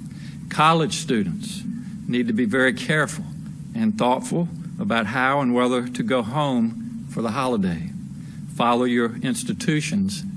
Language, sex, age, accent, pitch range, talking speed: English, male, 60-79, American, 130-195 Hz, 125 wpm